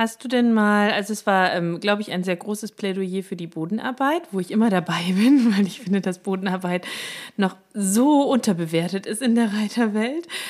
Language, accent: German, German